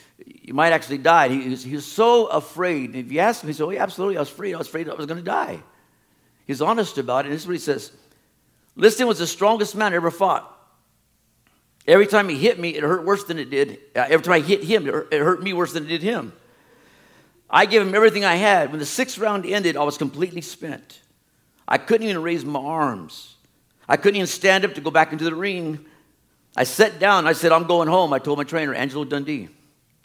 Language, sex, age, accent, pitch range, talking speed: English, male, 50-69, American, 150-200 Hz, 240 wpm